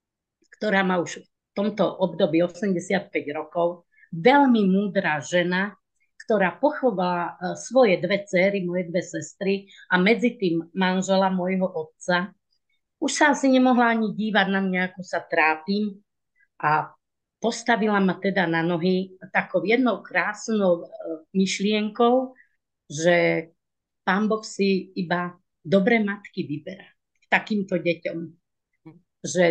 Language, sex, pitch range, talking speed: Slovak, female, 175-215 Hz, 115 wpm